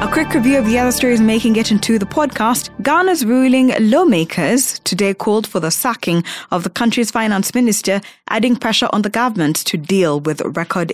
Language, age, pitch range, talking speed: English, 20-39, 175-220 Hz, 185 wpm